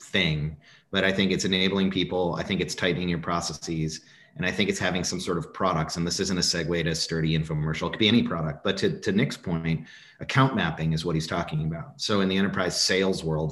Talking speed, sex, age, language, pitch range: 235 wpm, male, 30-49, English, 80-95 Hz